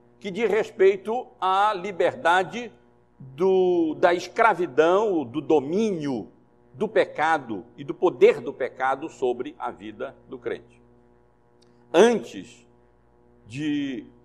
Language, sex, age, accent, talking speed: Portuguese, male, 60-79, Brazilian, 100 wpm